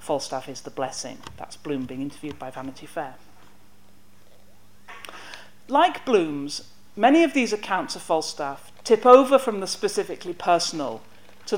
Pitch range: 135-210 Hz